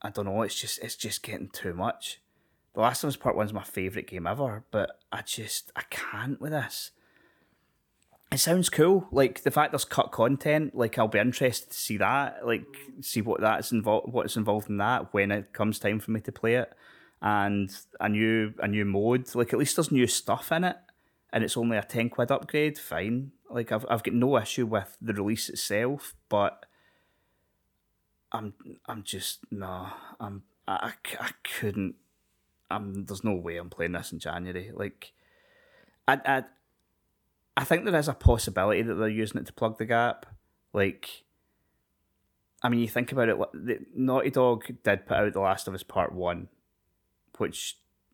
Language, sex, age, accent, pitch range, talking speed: English, male, 20-39, British, 95-125 Hz, 185 wpm